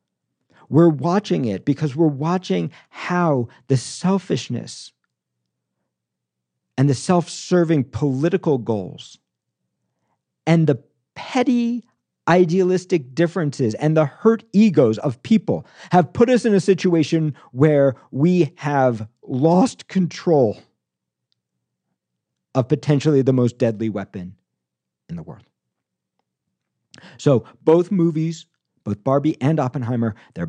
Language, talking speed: English, 105 wpm